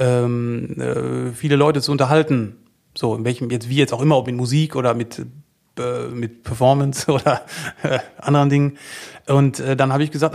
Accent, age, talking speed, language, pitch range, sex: German, 30-49, 155 wpm, German, 125-150 Hz, male